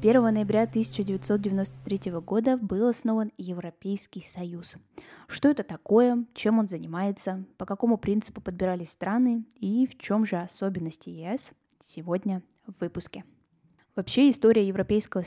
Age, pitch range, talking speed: 10-29, 180-235 Hz, 120 wpm